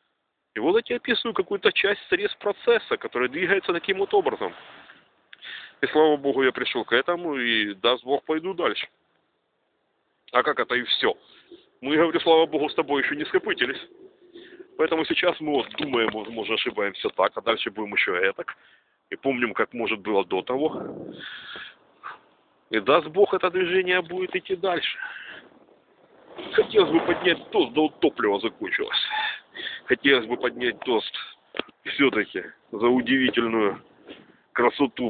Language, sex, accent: Russian, male, native